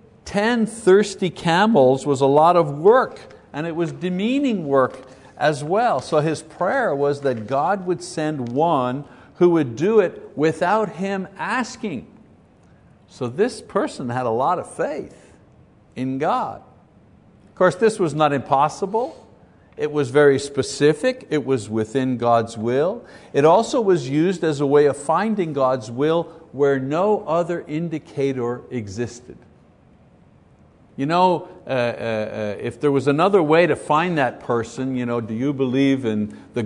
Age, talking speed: 60-79, 150 wpm